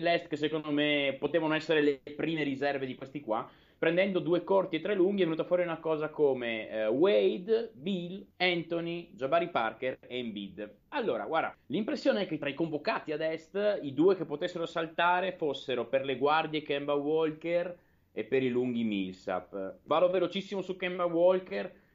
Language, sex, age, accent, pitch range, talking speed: Italian, male, 30-49, native, 115-160 Hz, 170 wpm